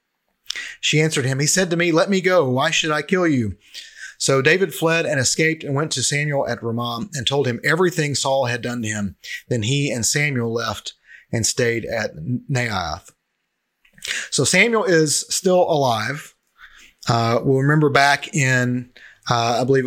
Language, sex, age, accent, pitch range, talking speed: English, male, 30-49, American, 110-140 Hz, 170 wpm